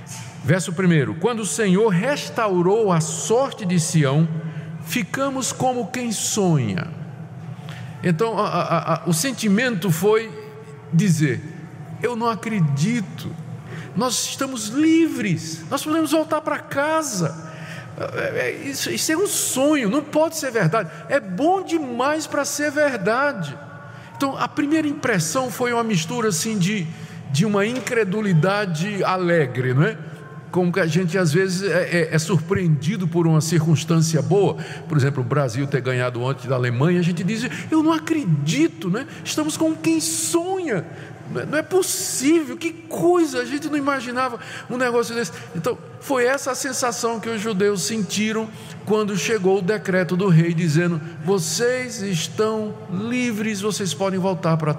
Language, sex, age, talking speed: Portuguese, male, 50-69, 145 wpm